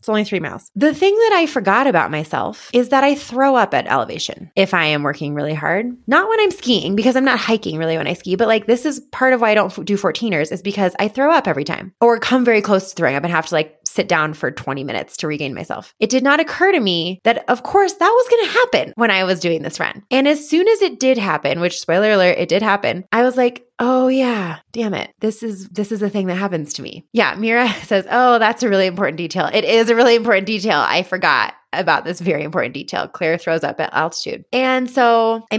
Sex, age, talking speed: female, 20-39, 260 wpm